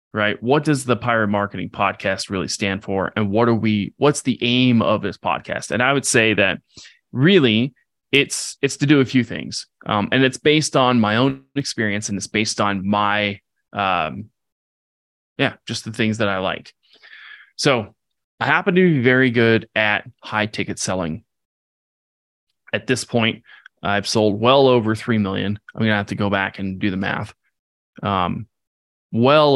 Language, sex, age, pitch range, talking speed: English, male, 20-39, 100-120 Hz, 175 wpm